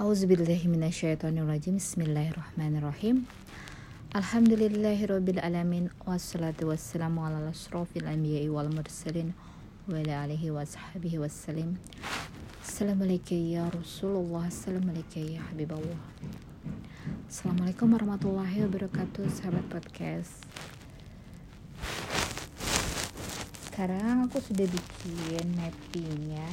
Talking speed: 45 wpm